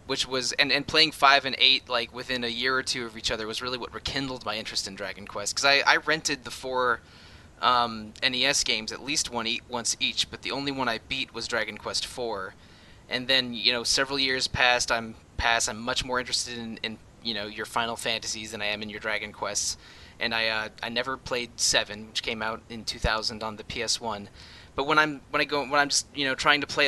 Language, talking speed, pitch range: English, 240 wpm, 115-135 Hz